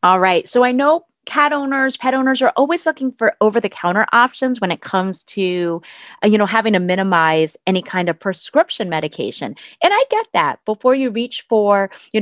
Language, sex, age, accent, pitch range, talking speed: English, female, 30-49, American, 180-255 Hz, 185 wpm